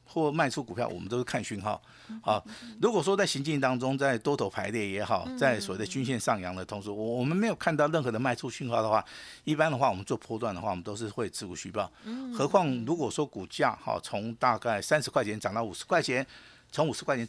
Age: 50-69